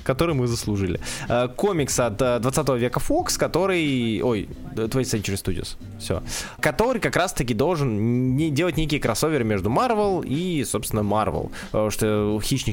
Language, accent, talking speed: Russian, native, 135 wpm